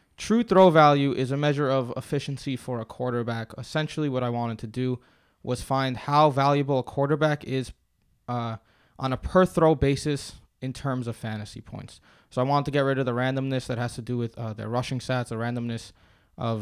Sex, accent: male, American